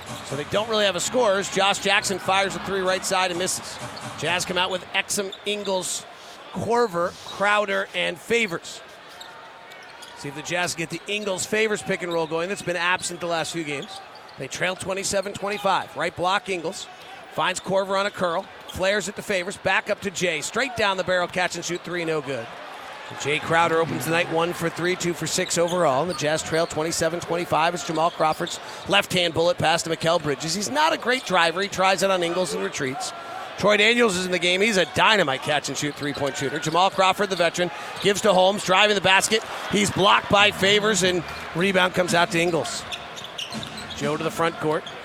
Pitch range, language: 165-195 Hz, English